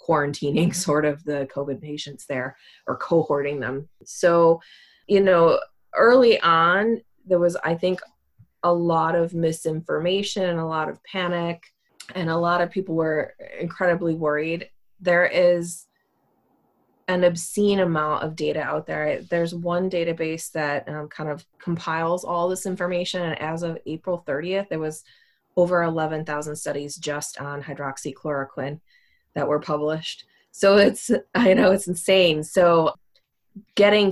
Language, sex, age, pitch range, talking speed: English, female, 20-39, 150-180 Hz, 140 wpm